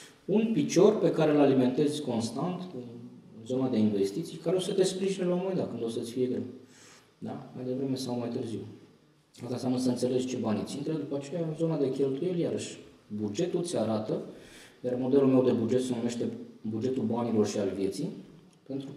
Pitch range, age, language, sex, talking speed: 115-145 Hz, 20-39, Romanian, male, 195 wpm